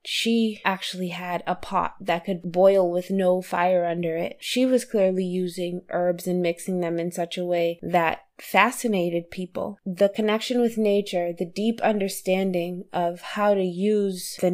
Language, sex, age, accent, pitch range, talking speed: English, female, 20-39, American, 175-205 Hz, 165 wpm